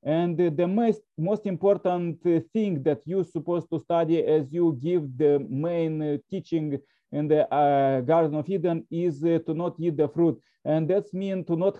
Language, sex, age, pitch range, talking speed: English, male, 30-49, 150-175 Hz, 180 wpm